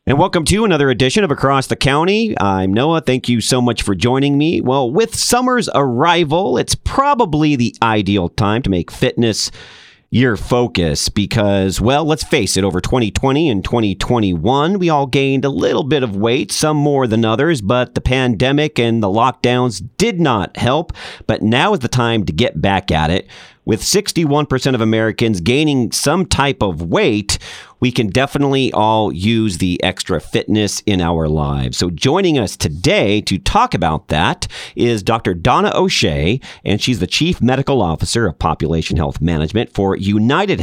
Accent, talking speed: American, 170 wpm